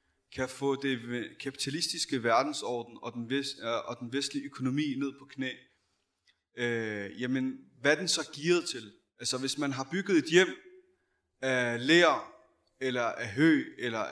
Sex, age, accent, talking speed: male, 30-49, native, 135 wpm